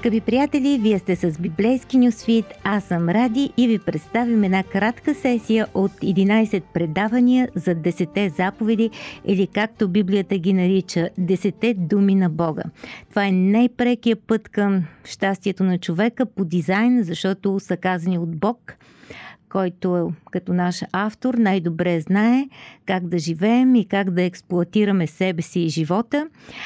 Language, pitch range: Bulgarian, 180-220 Hz